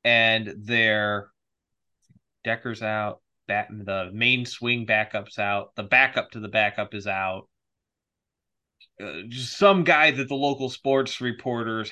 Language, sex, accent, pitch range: English, male, American, 115-140 Hz